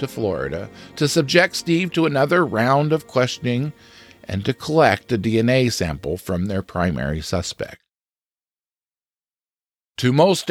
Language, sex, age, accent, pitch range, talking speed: English, male, 50-69, American, 110-165 Hz, 120 wpm